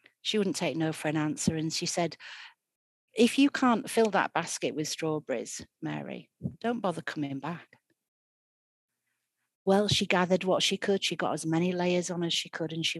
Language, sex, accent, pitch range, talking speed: English, female, British, 160-185 Hz, 185 wpm